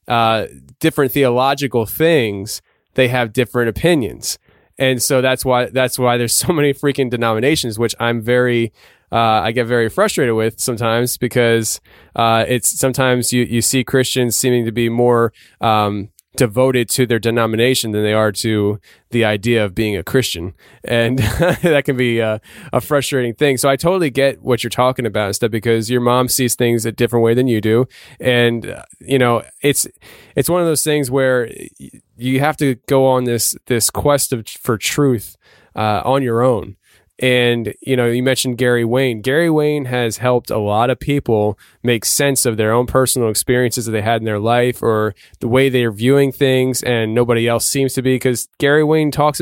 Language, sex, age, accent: English, male, 20-39, American